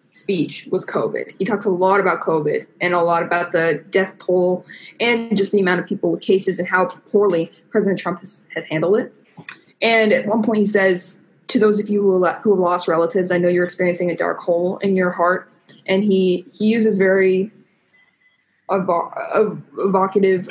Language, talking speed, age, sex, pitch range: English, 180 wpm, 20-39, female, 180-215 Hz